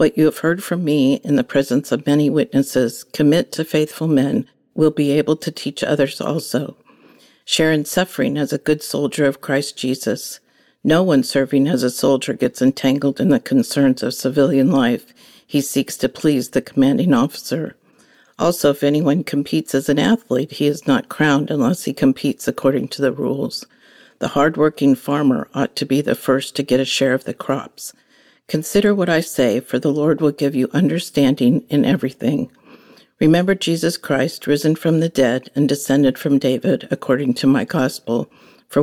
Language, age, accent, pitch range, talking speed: English, 50-69, American, 135-155 Hz, 180 wpm